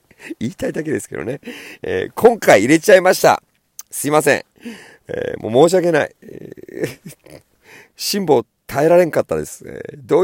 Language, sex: Japanese, male